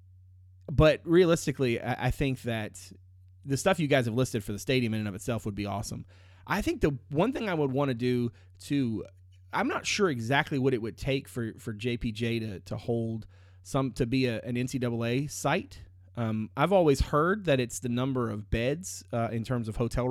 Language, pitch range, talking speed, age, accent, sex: English, 100-130 Hz, 210 wpm, 30-49, American, male